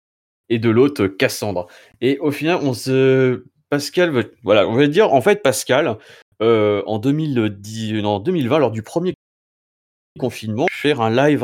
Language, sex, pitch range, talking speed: French, male, 105-145 Hz, 155 wpm